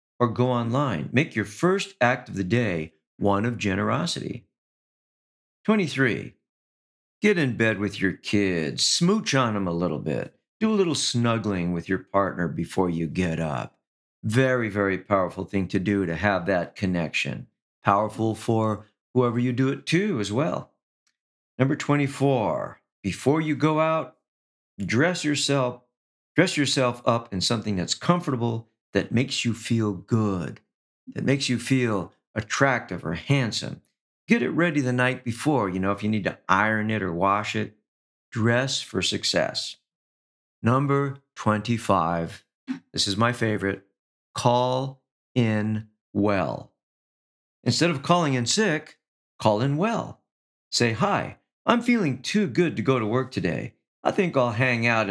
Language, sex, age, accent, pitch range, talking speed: English, male, 50-69, American, 100-135 Hz, 150 wpm